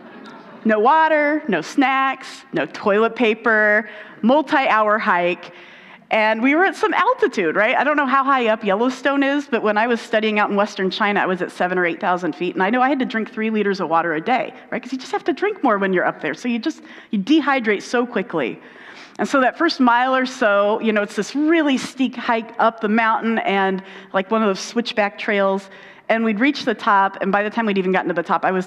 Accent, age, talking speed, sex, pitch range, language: American, 40-59, 235 wpm, female, 195-255 Hz, English